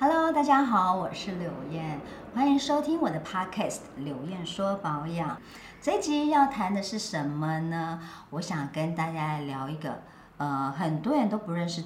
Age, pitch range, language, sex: 50-69, 155-210 Hz, Chinese, male